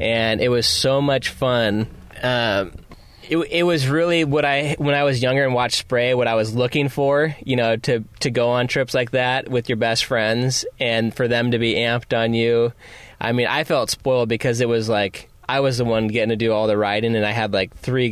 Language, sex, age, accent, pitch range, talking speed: English, male, 20-39, American, 110-130 Hz, 230 wpm